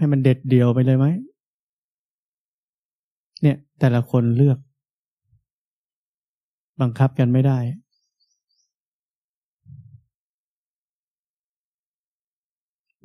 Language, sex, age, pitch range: Thai, male, 20-39, 125-145 Hz